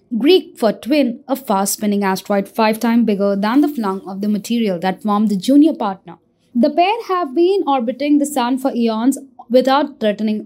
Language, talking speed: English, 180 wpm